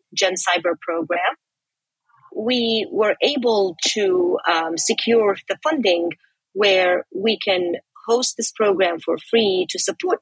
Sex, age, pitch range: female, 30-49, 185-235 Hz